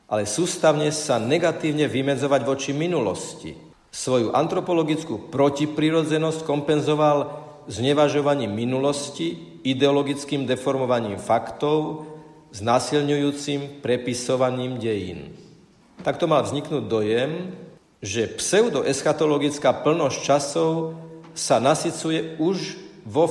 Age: 50-69